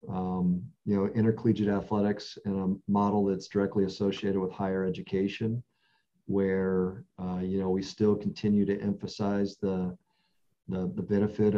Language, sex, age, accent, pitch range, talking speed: English, male, 40-59, American, 95-105 Hz, 140 wpm